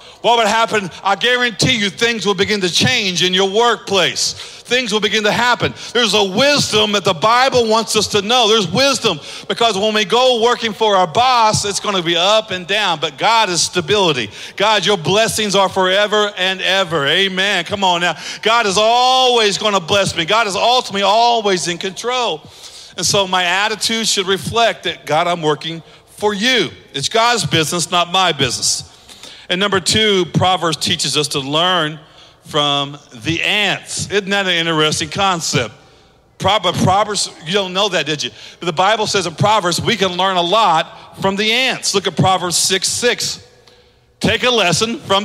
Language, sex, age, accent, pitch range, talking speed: English, male, 40-59, American, 180-225 Hz, 180 wpm